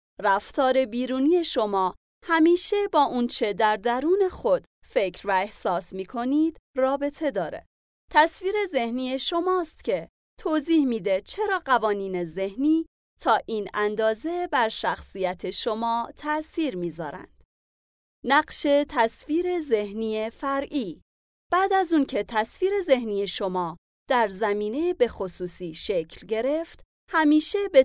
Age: 30-49